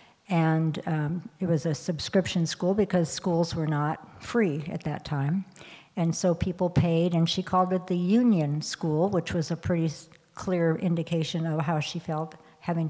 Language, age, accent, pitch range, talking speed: English, 60-79, American, 160-185 Hz, 170 wpm